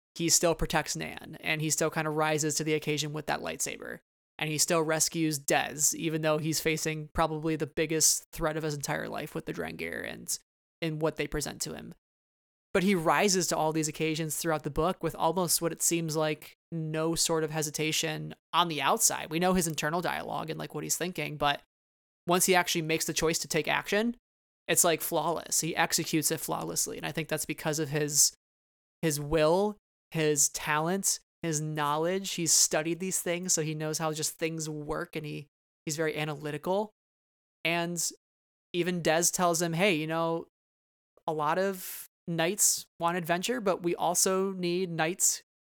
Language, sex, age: English, male, 20-39